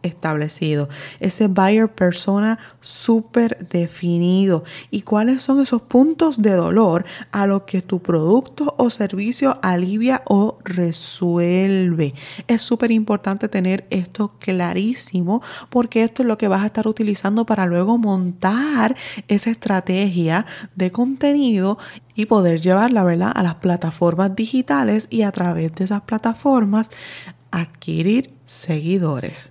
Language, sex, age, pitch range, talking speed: Spanish, female, 20-39, 170-225 Hz, 120 wpm